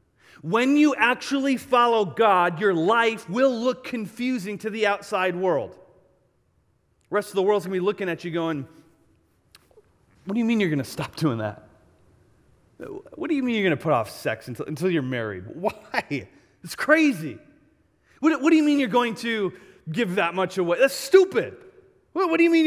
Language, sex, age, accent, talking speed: English, male, 30-49, American, 190 wpm